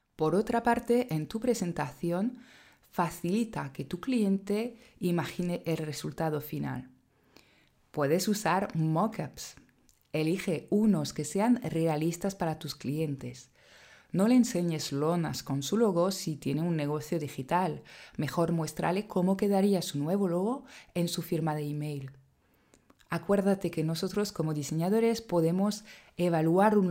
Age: 20-39